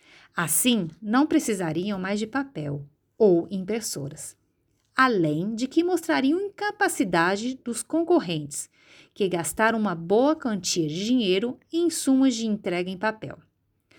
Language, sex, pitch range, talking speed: Portuguese, female, 185-265 Hz, 120 wpm